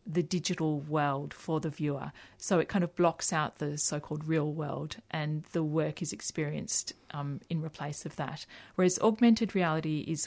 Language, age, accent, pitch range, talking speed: English, 40-59, Australian, 150-170 Hz, 175 wpm